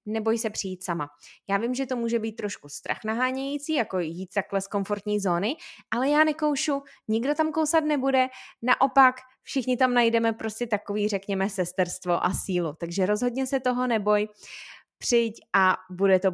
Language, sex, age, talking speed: Czech, female, 20-39, 165 wpm